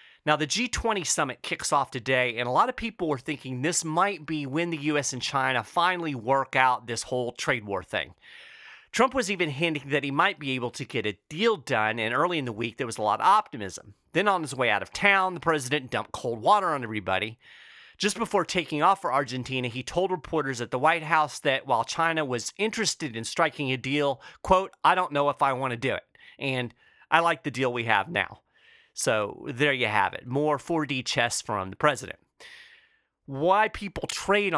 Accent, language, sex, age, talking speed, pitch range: American, English, male, 40-59, 215 wpm, 120-165 Hz